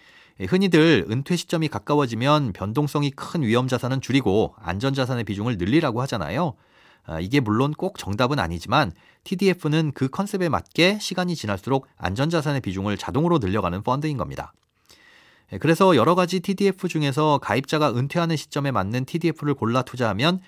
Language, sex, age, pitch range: Korean, male, 40-59, 115-170 Hz